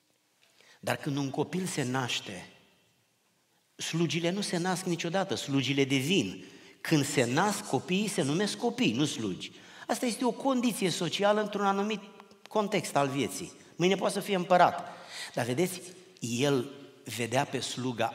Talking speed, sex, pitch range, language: 140 wpm, male, 120-180 Hz, Romanian